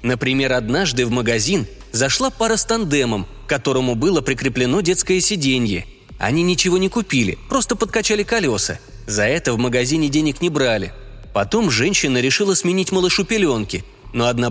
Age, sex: 20-39, male